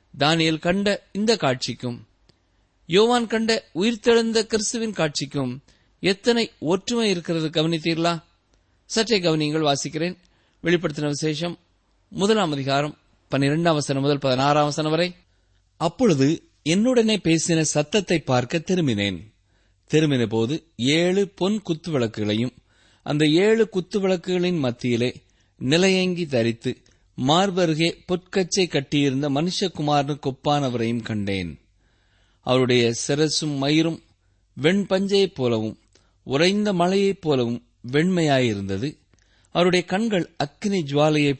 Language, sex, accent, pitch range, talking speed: Tamil, male, native, 120-180 Hz, 85 wpm